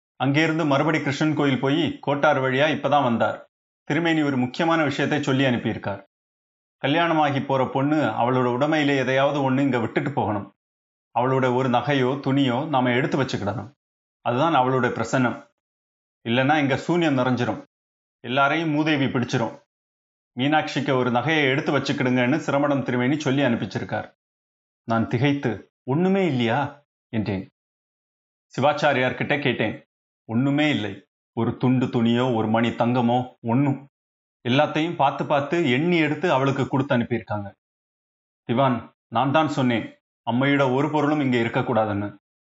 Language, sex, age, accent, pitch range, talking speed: Tamil, male, 30-49, native, 115-140 Hz, 120 wpm